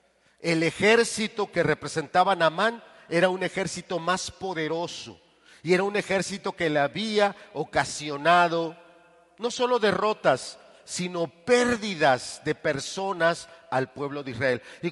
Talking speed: 120 wpm